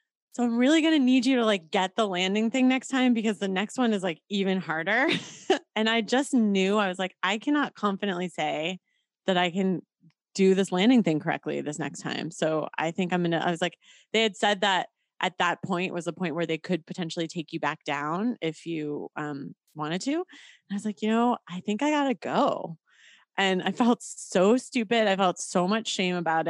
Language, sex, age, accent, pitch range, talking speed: English, female, 20-39, American, 170-230 Hz, 225 wpm